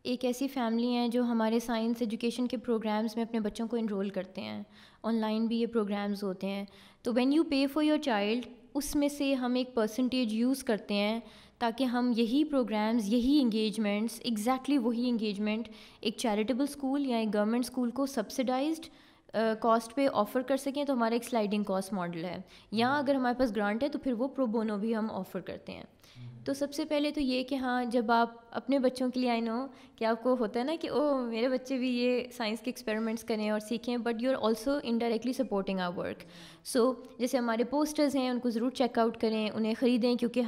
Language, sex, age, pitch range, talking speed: Urdu, female, 20-39, 220-260 Hz, 210 wpm